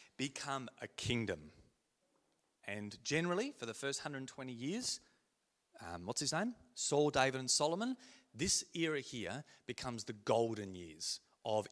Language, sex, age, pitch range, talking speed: English, male, 30-49, 130-195 Hz, 135 wpm